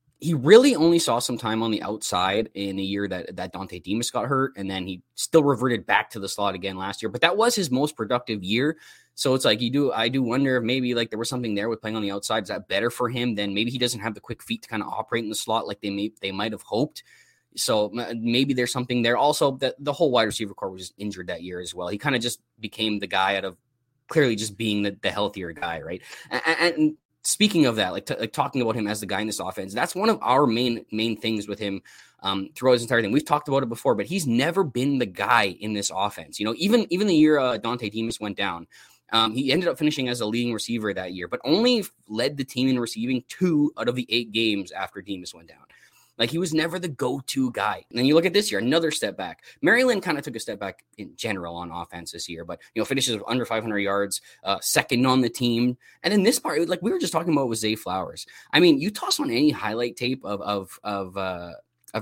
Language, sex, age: English, male, 20-39